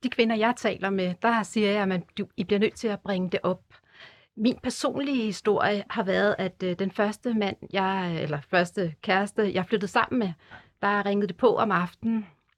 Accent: native